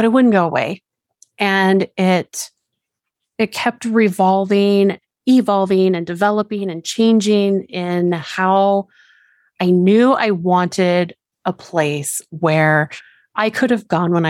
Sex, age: female, 30-49